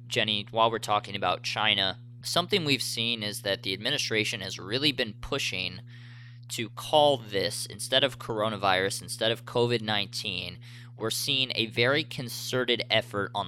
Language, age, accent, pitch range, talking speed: English, 20-39, American, 105-120 Hz, 145 wpm